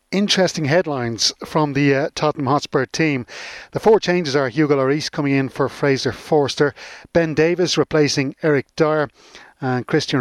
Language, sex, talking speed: English, male, 155 wpm